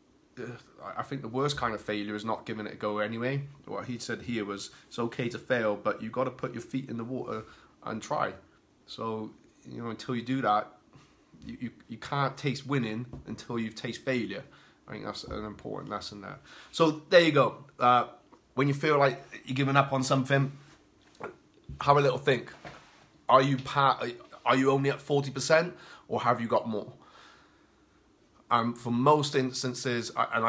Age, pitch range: 20-39, 110-135 Hz